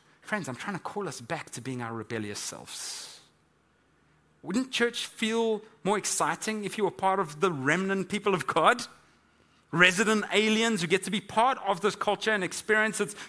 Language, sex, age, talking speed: English, male, 30-49, 180 wpm